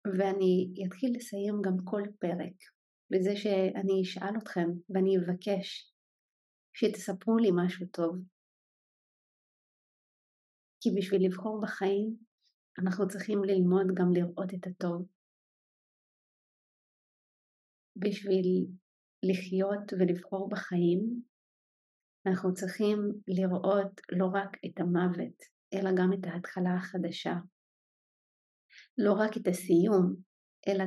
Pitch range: 185-205 Hz